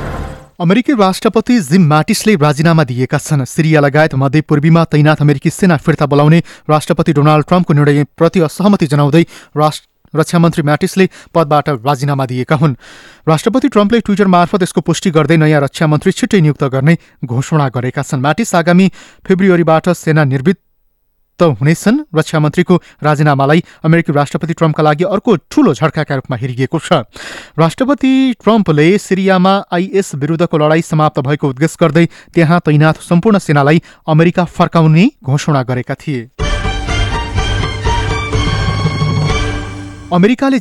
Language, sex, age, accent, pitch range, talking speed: English, male, 30-49, Indian, 145-180 Hz, 90 wpm